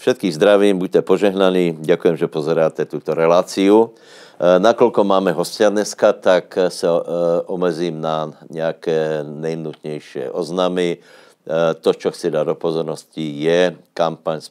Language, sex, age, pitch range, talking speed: Slovak, male, 60-79, 80-90 Hz, 120 wpm